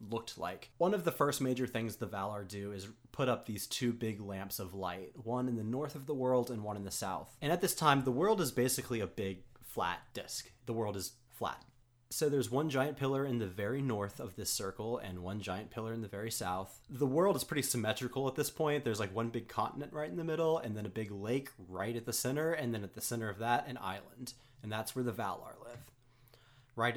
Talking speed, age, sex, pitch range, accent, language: 245 wpm, 30-49, male, 110-135 Hz, American, English